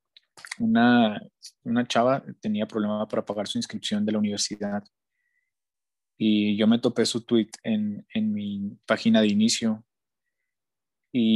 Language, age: Spanish, 20-39